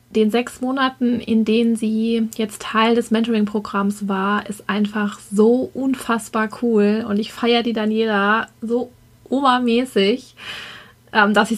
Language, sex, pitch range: German, female, 210-235 Hz